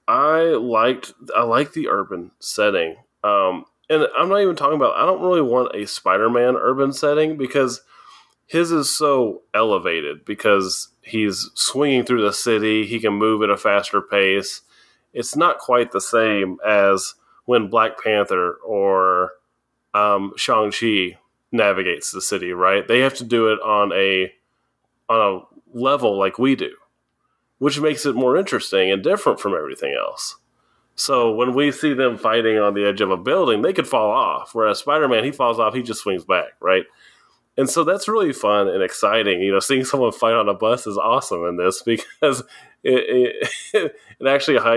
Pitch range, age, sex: 105-170 Hz, 30-49, male